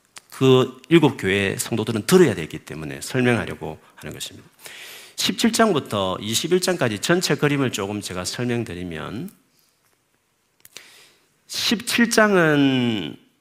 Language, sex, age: Korean, male, 40-59